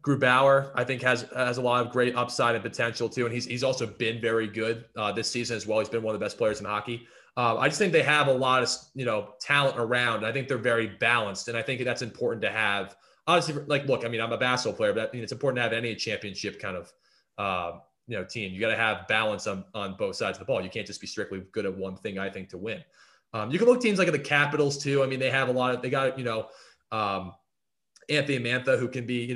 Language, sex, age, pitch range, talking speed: English, male, 20-39, 110-135 Hz, 280 wpm